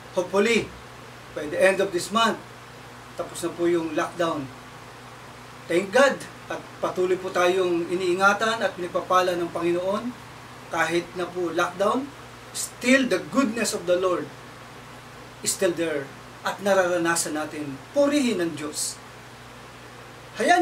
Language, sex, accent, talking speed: Filipino, male, native, 125 wpm